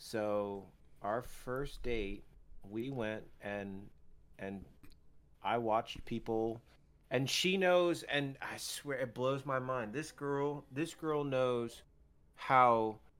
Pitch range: 105-135 Hz